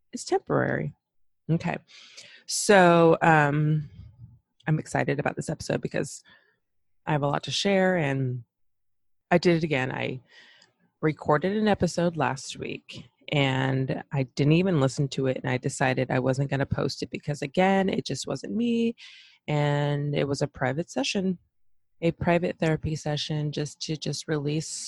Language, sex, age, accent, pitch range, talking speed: English, female, 20-39, American, 130-170 Hz, 150 wpm